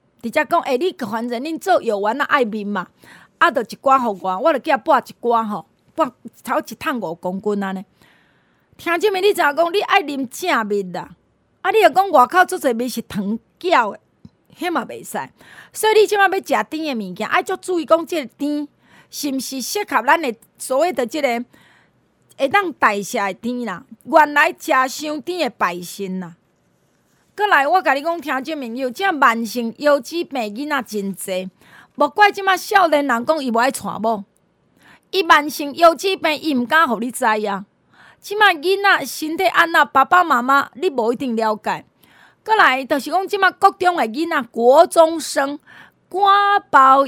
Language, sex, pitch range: Chinese, female, 230-340 Hz